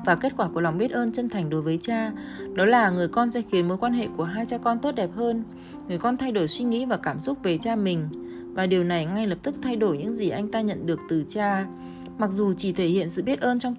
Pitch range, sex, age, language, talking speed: 165-235 Hz, female, 20-39, Vietnamese, 285 wpm